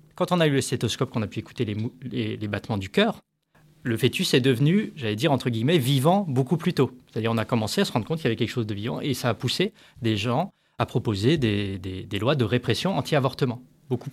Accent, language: French, French